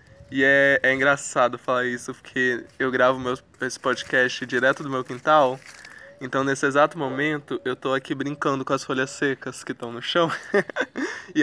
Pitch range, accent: 130-165 Hz, Brazilian